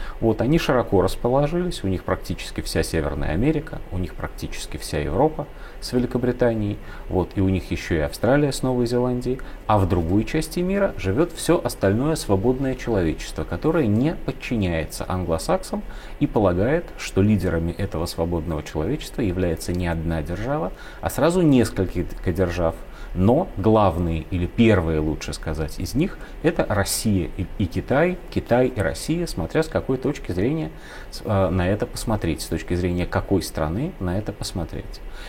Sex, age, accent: male, 30-49, native